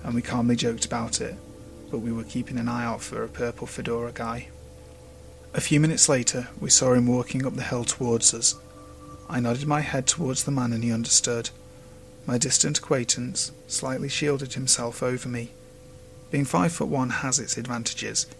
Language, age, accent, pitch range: English, 30-49, British, 120-125 Hz